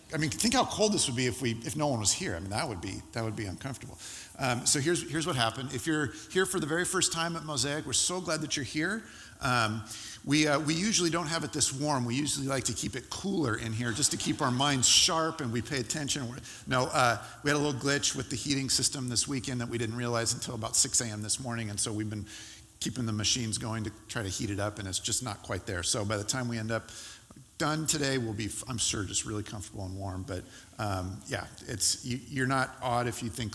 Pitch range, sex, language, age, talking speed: 110-140 Hz, male, English, 50-69, 265 wpm